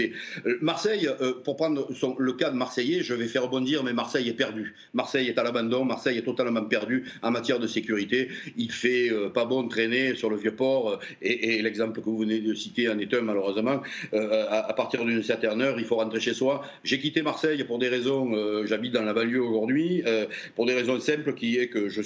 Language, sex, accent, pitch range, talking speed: French, male, French, 115-135 Hz, 235 wpm